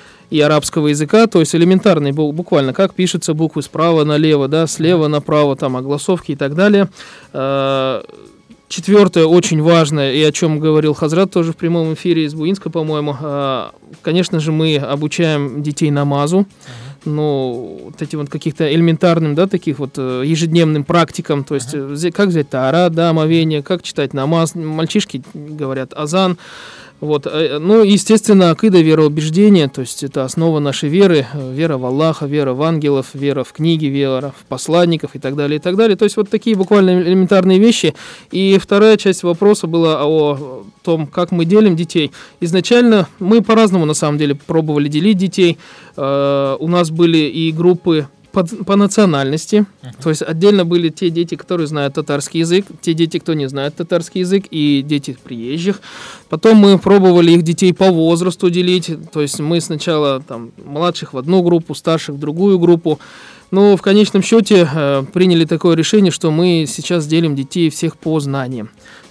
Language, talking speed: Russian, 160 wpm